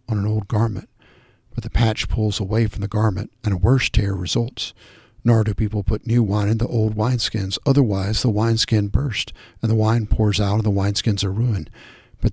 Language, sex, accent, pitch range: English, male, American, 105-120 Hz